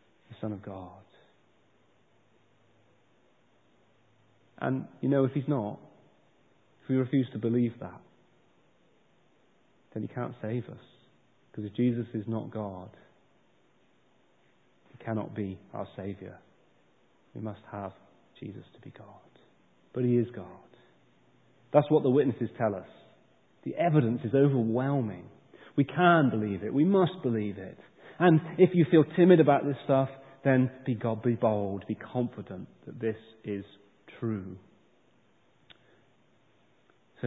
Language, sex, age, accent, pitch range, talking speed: English, male, 30-49, British, 110-135 Hz, 130 wpm